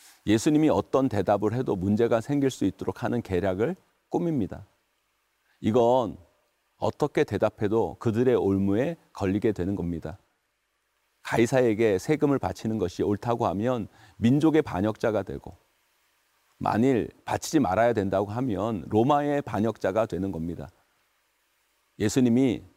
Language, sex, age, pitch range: Korean, male, 40-59, 100-130 Hz